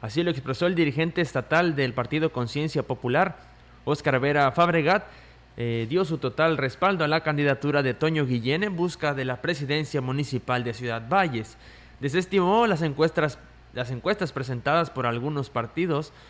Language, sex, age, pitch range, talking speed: Spanish, male, 20-39, 130-170 Hz, 155 wpm